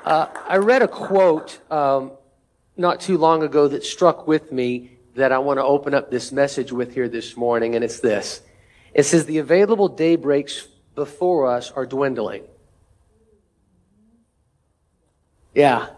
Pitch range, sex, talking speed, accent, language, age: 125-160 Hz, male, 145 wpm, American, English, 40-59